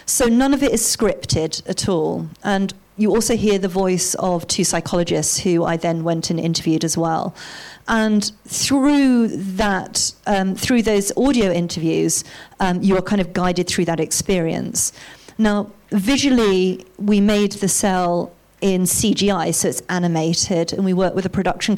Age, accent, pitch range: 40-59, British, 170-205 Hz